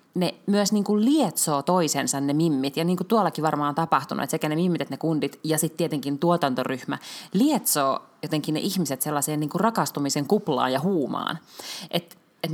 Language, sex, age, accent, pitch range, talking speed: Finnish, female, 30-49, native, 145-185 Hz, 180 wpm